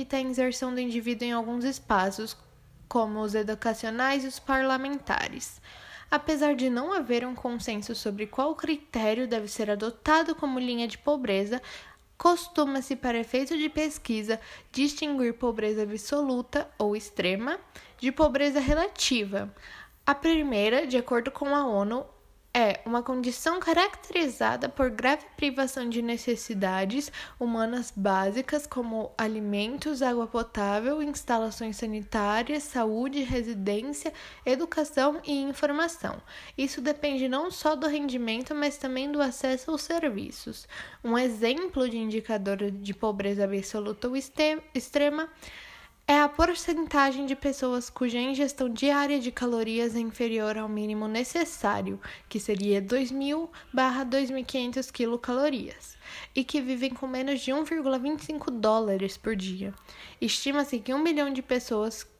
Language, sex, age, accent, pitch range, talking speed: Portuguese, female, 10-29, Brazilian, 225-285 Hz, 125 wpm